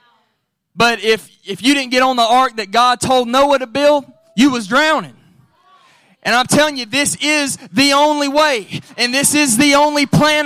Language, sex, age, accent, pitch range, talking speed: English, male, 20-39, American, 205-270 Hz, 190 wpm